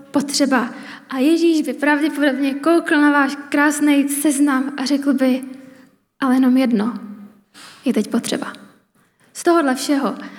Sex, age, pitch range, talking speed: female, 20-39, 245-280 Hz, 125 wpm